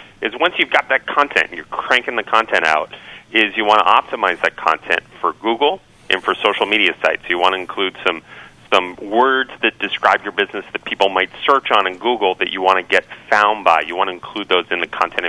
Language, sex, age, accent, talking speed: English, male, 40-59, American, 230 wpm